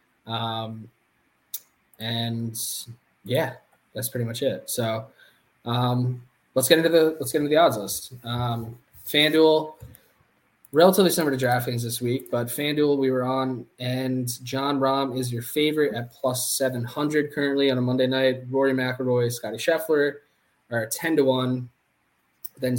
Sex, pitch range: male, 120-140 Hz